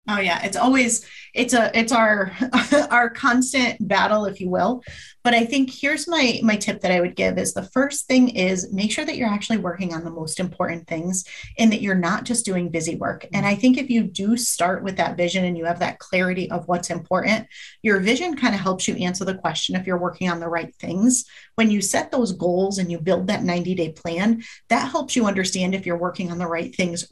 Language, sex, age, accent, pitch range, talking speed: English, female, 30-49, American, 185-235 Hz, 230 wpm